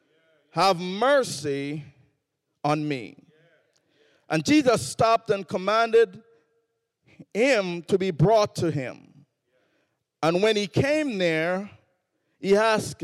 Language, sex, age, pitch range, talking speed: English, male, 50-69, 150-220 Hz, 100 wpm